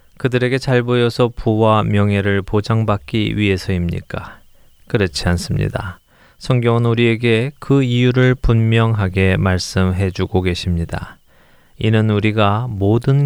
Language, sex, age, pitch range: Korean, male, 20-39, 95-120 Hz